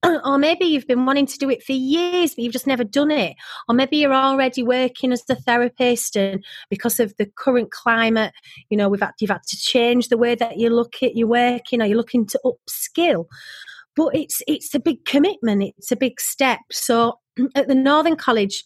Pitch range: 210-275 Hz